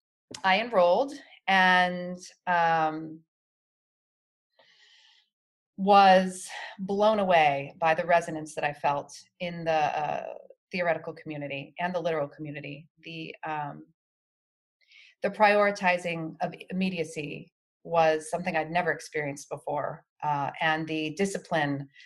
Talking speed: 105 wpm